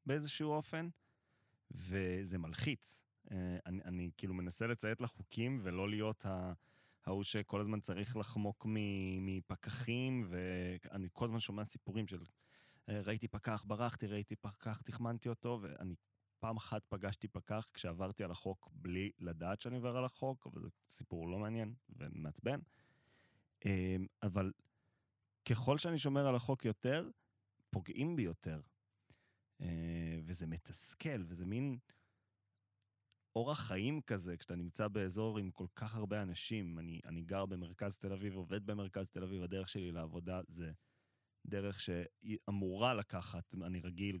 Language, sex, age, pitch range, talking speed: Hebrew, male, 20-39, 95-115 Hz, 130 wpm